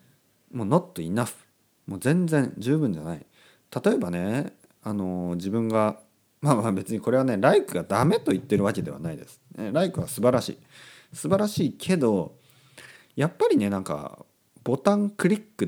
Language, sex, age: Japanese, male, 40-59